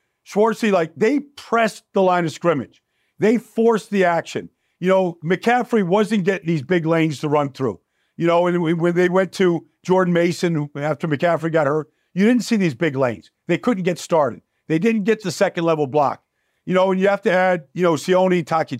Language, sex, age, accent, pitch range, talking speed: English, male, 50-69, American, 160-195 Hz, 200 wpm